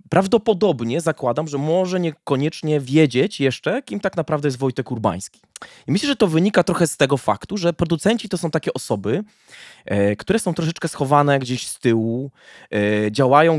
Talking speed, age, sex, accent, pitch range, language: 160 wpm, 20-39, male, native, 130-165 Hz, Polish